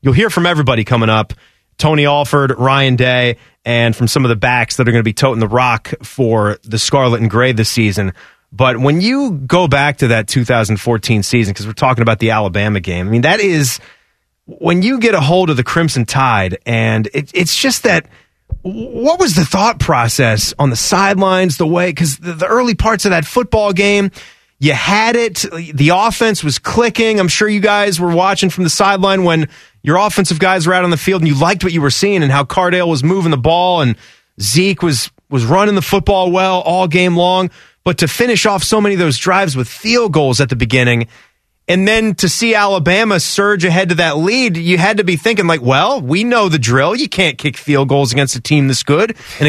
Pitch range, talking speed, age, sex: 130-200 Hz, 220 wpm, 30-49, male